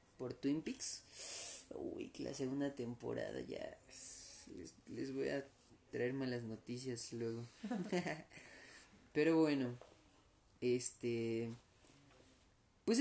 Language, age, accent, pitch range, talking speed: Spanish, 30-49, Mexican, 125-165 Hz, 90 wpm